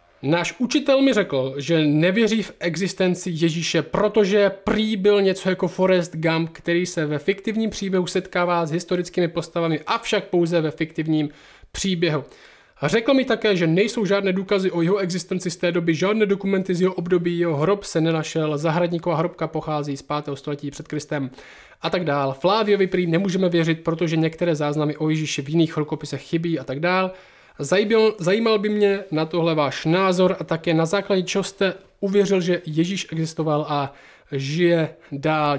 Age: 20-39